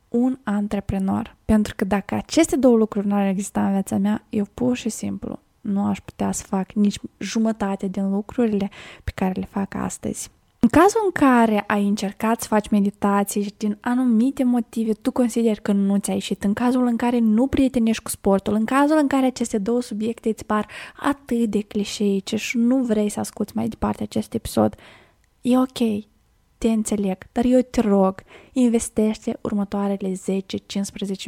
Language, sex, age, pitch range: Romanian, female, 20-39, 200-235 Hz